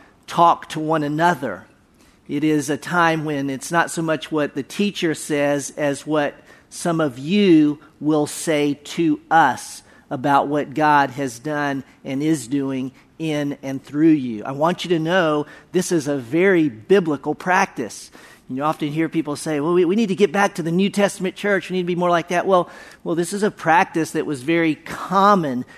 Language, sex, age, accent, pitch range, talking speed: English, male, 40-59, American, 150-185 Hz, 190 wpm